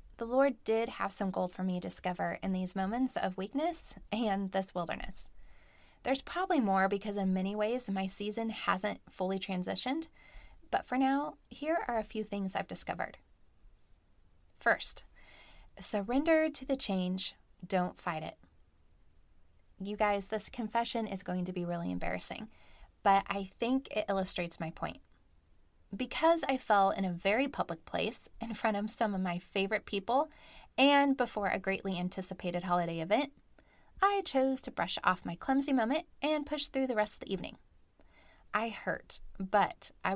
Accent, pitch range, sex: American, 180-250 Hz, female